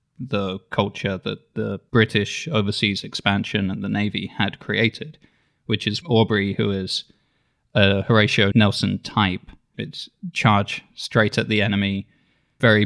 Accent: British